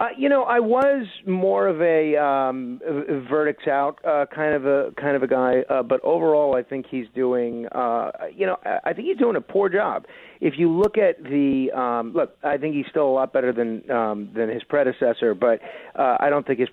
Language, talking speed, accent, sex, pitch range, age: English, 235 wpm, American, male, 120-155 Hz, 40-59